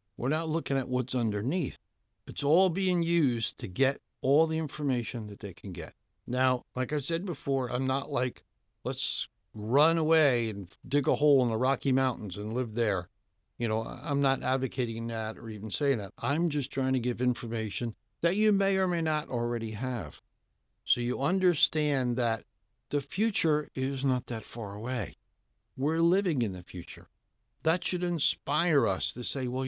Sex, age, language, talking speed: male, 60-79, English, 180 wpm